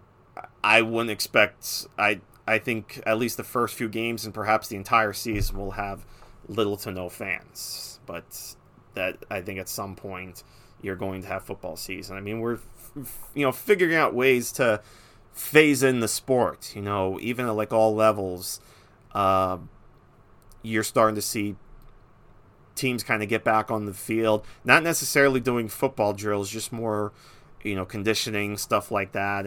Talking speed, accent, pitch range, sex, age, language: 170 wpm, American, 100-125 Hz, male, 30-49, English